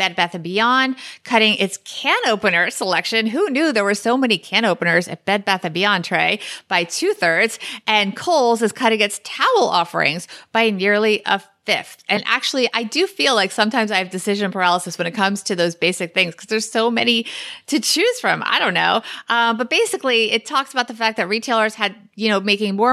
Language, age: English, 30-49